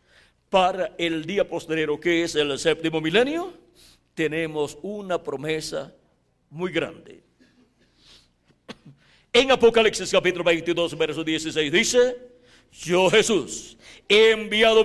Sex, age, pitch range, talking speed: male, 60-79, 175-250 Hz, 100 wpm